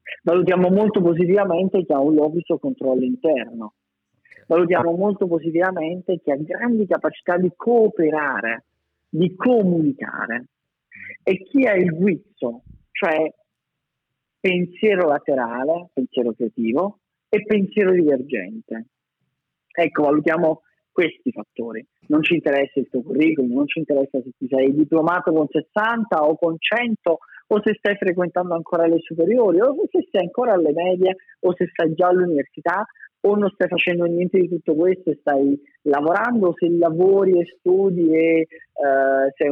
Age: 40-59